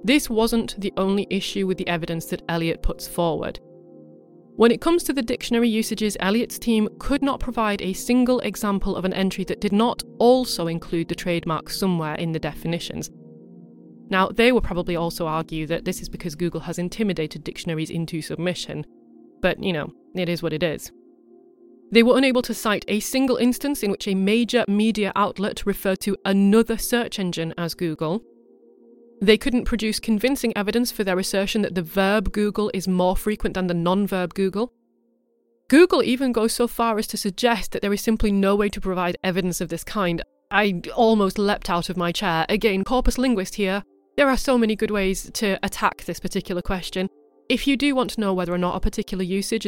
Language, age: English, 30-49